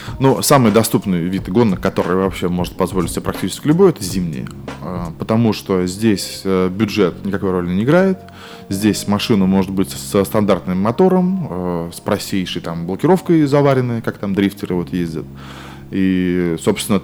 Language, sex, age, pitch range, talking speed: Russian, male, 20-39, 85-105 Hz, 145 wpm